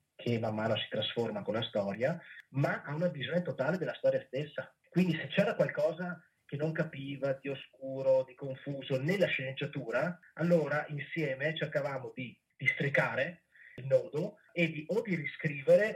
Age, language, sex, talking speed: 30-49, Italian, male, 160 wpm